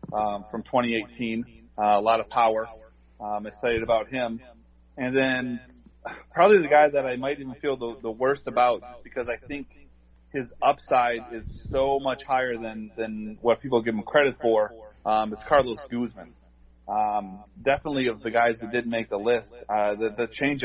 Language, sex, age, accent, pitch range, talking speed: English, male, 30-49, American, 105-125 Hz, 185 wpm